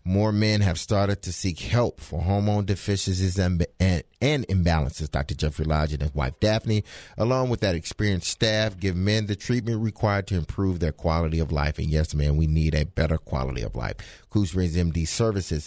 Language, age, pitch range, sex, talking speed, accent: English, 30-49, 80-105 Hz, male, 190 wpm, American